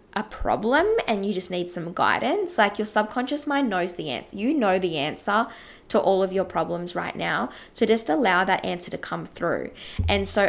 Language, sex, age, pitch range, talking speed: English, female, 10-29, 170-205 Hz, 205 wpm